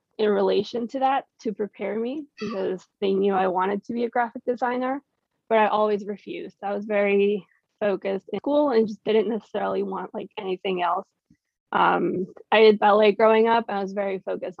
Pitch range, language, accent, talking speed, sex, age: 195-230 Hz, English, American, 190 wpm, female, 20-39